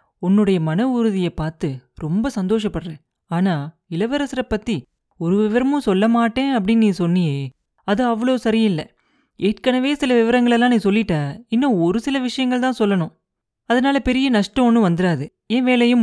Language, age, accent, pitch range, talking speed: Tamil, 30-49, native, 170-235 Hz, 140 wpm